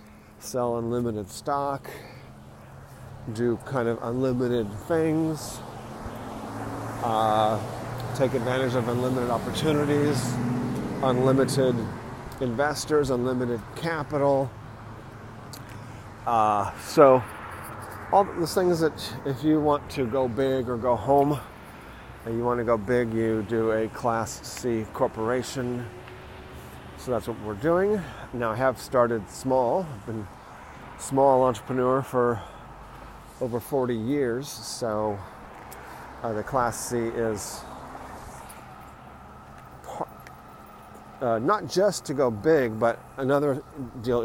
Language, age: English, 40-59